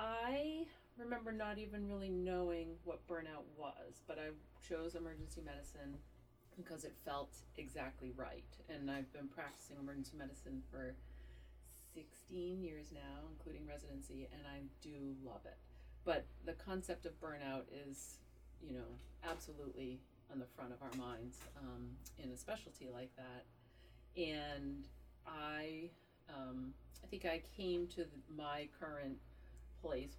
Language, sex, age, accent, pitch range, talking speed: English, female, 40-59, American, 130-155 Hz, 135 wpm